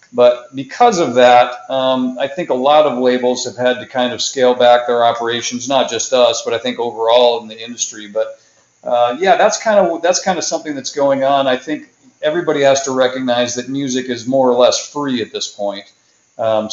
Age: 40-59